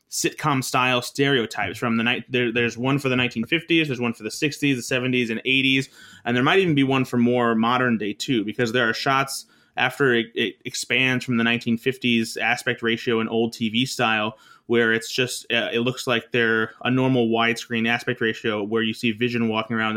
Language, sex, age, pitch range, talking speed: English, male, 20-39, 115-130 Hz, 205 wpm